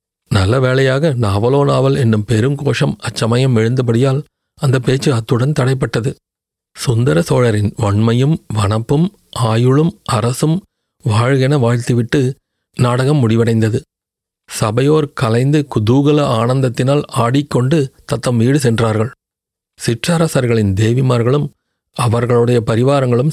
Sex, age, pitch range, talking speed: male, 40-59, 115-140 Hz, 90 wpm